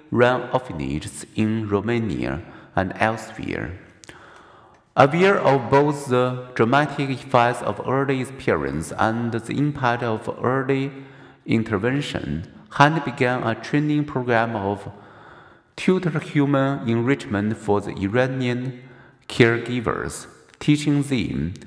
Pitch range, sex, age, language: 110-140 Hz, male, 50-69, Chinese